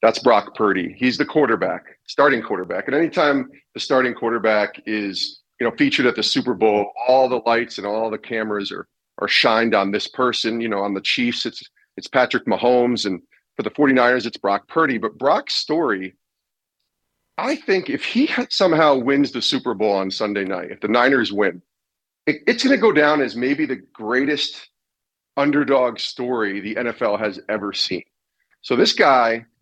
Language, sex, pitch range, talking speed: English, male, 105-135 Hz, 180 wpm